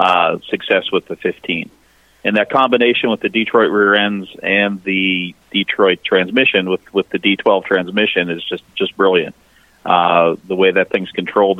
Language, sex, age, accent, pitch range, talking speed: English, male, 40-59, American, 95-105 Hz, 165 wpm